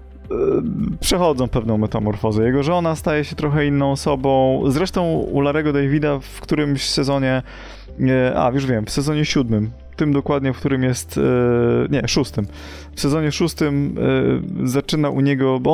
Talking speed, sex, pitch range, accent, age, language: 140 wpm, male, 130-160 Hz, native, 20-39, Polish